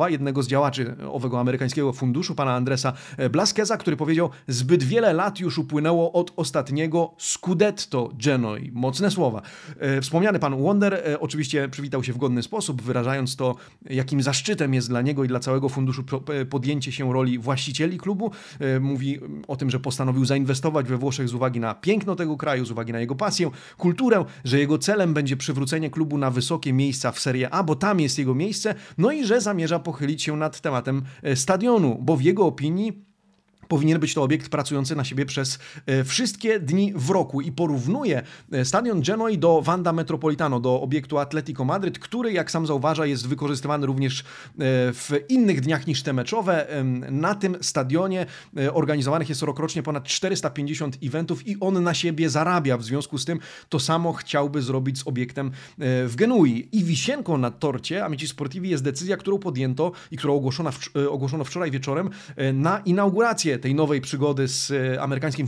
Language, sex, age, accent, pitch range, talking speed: Polish, male, 30-49, native, 135-170 Hz, 170 wpm